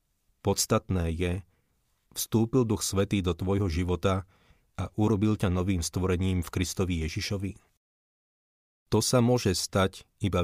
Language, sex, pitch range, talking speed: Slovak, male, 90-110 Hz, 120 wpm